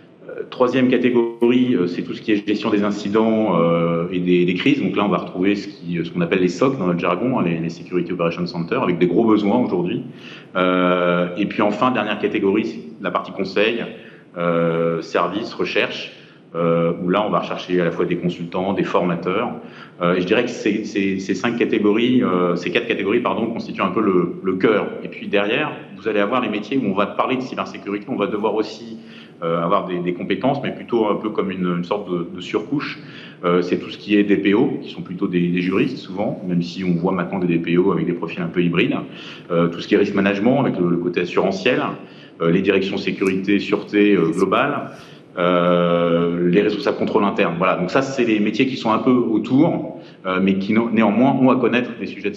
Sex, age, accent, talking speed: male, 40-59, French, 210 wpm